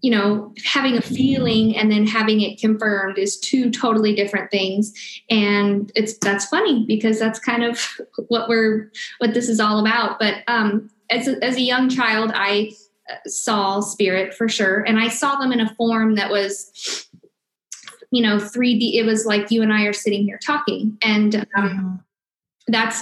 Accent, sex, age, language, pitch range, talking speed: American, female, 20-39, English, 205-240 Hz, 175 wpm